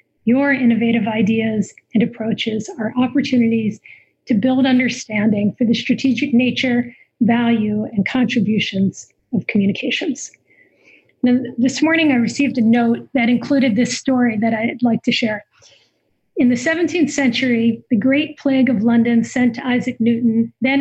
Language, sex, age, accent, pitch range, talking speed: English, female, 40-59, American, 225-260 Hz, 140 wpm